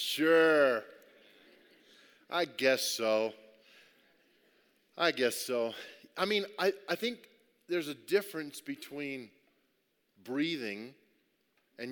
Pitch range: 135-205 Hz